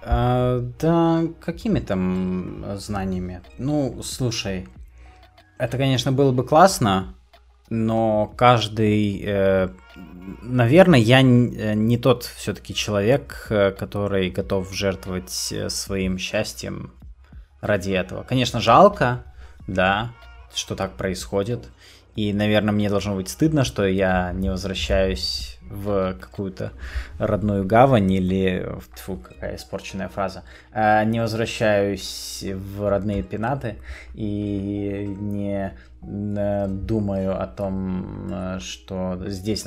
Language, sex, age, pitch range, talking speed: Russian, male, 20-39, 95-110 Hz, 95 wpm